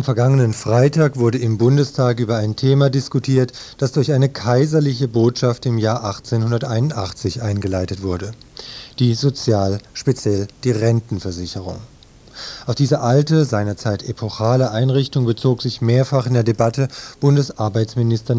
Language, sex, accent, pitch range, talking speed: German, male, German, 105-130 Hz, 120 wpm